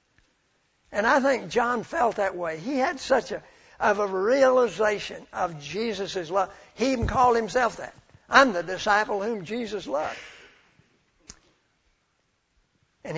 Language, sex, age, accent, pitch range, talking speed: English, male, 60-79, American, 175-220 Hz, 130 wpm